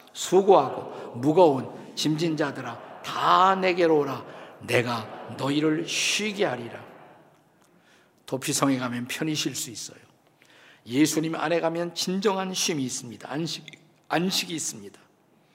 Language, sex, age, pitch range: Korean, male, 50-69, 135-180 Hz